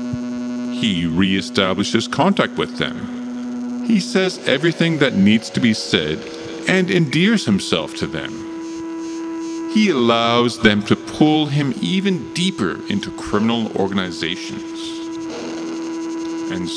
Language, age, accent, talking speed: English, 40-59, American, 105 wpm